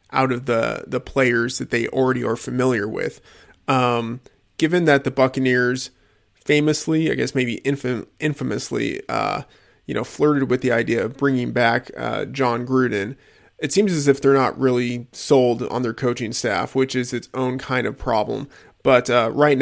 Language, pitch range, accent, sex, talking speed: English, 120-135 Hz, American, male, 170 wpm